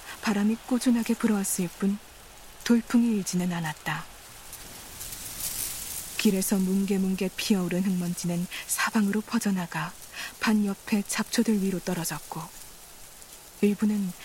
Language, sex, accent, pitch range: Korean, female, native, 185-220 Hz